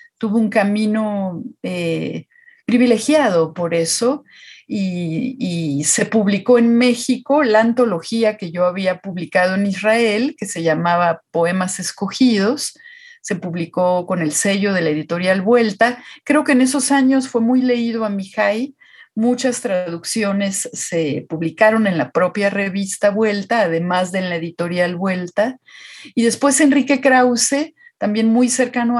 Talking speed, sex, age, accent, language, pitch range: 140 wpm, female, 40-59, Mexican, Spanish, 195-245 Hz